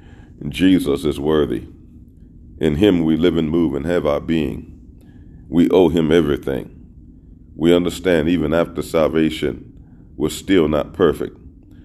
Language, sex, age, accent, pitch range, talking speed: English, male, 40-59, American, 70-80 Hz, 130 wpm